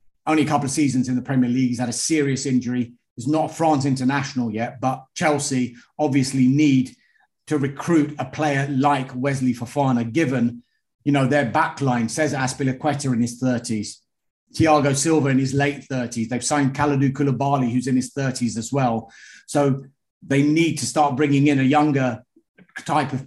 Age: 30-49